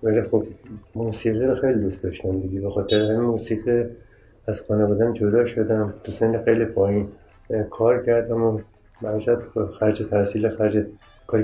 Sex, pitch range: male, 100-115 Hz